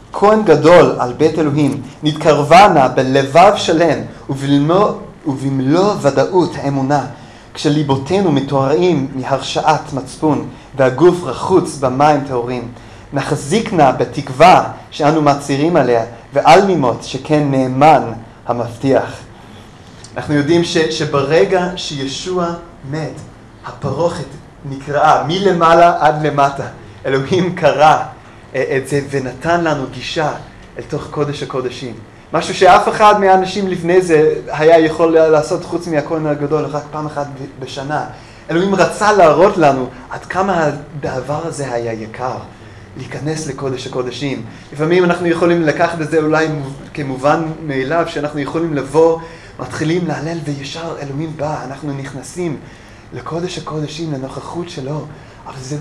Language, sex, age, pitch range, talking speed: Hebrew, male, 30-49, 135-165 Hz, 115 wpm